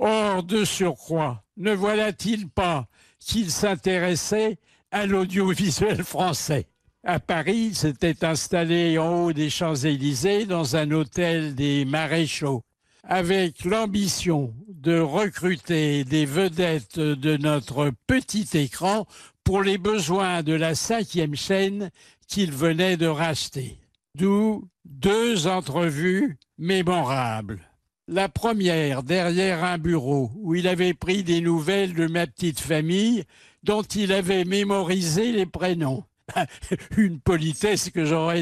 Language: French